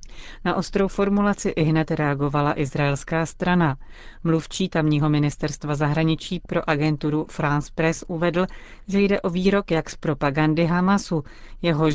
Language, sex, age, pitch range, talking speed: Czech, female, 40-59, 150-175 Hz, 130 wpm